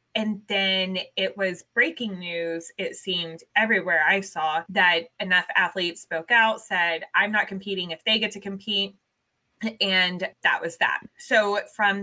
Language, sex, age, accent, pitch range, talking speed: English, female, 20-39, American, 175-215 Hz, 155 wpm